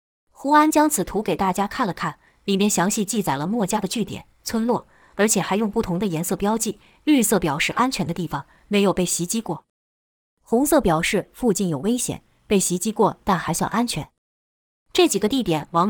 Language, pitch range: Chinese, 175-230 Hz